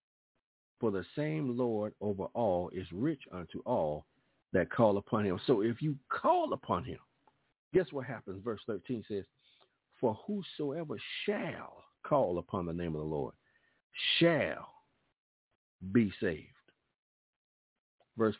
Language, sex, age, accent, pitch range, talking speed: English, male, 50-69, American, 110-150 Hz, 130 wpm